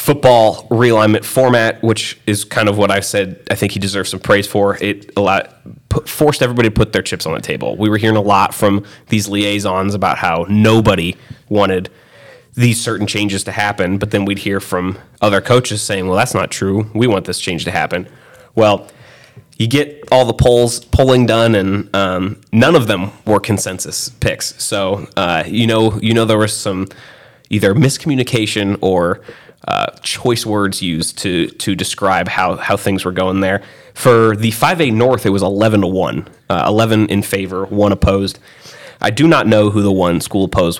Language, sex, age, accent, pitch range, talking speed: English, male, 20-39, American, 100-120 Hz, 190 wpm